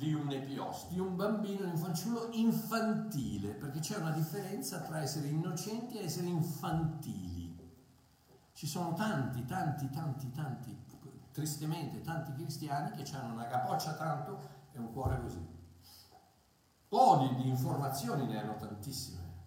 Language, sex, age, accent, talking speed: Italian, male, 50-69, native, 140 wpm